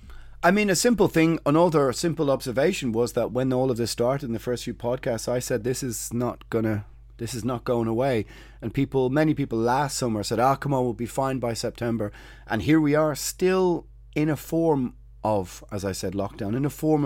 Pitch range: 105-135 Hz